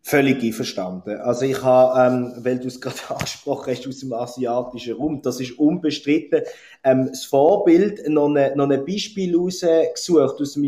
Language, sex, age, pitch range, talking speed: German, male, 30-49, 130-175 Hz, 145 wpm